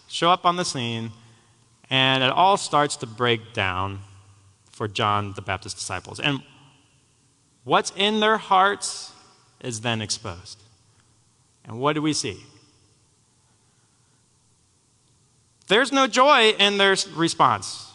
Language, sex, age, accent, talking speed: English, male, 30-49, American, 120 wpm